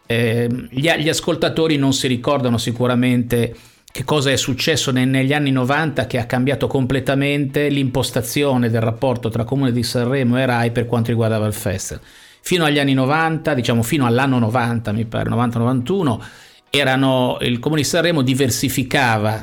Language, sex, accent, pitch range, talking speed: Italian, male, native, 115-140 Hz, 160 wpm